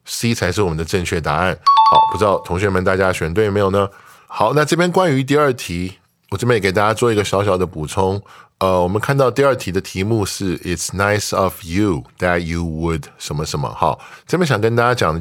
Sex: male